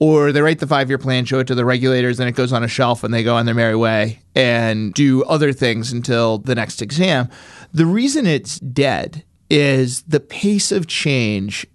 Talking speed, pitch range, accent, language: 210 wpm, 125-155 Hz, American, English